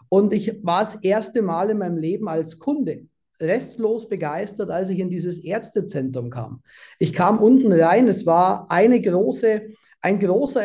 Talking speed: 165 wpm